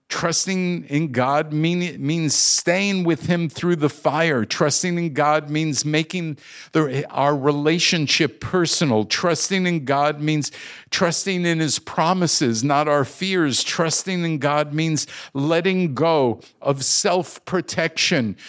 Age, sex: 50-69, male